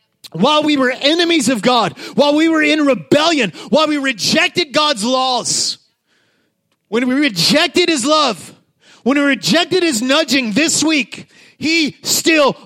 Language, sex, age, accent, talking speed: English, male, 30-49, American, 140 wpm